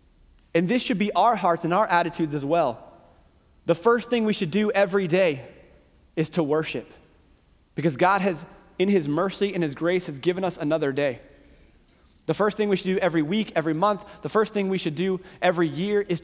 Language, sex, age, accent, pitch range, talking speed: English, male, 30-49, American, 140-185 Hz, 205 wpm